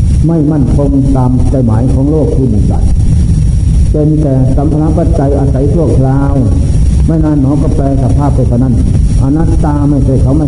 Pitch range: 85-135 Hz